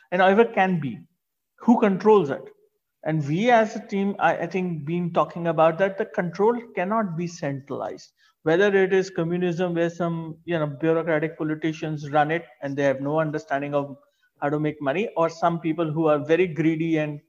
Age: 50-69